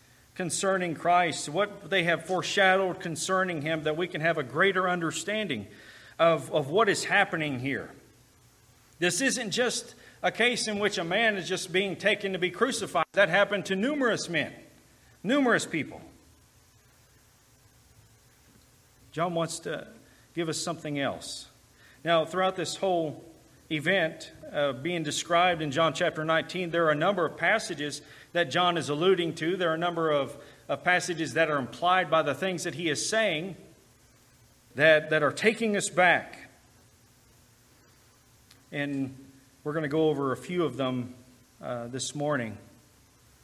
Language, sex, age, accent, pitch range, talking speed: English, male, 40-59, American, 140-180 Hz, 150 wpm